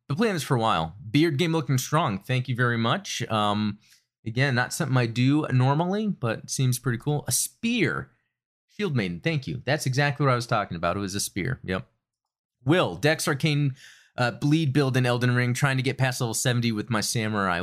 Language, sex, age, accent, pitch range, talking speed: English, male, 30-49, American, 105-140 Hz, 210 wpm